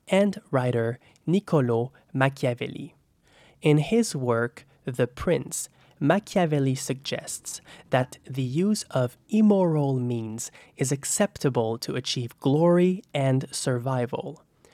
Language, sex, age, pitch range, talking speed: English, male, 20-39, 125-165 Hz, 100 wpm